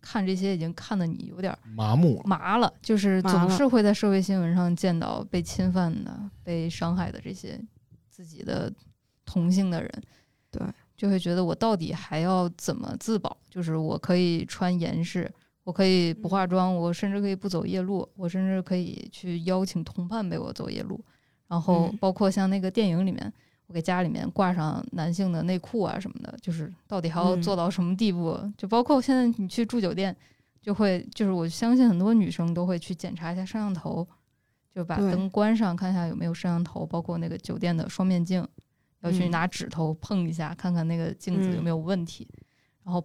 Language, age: Chinese, 20-39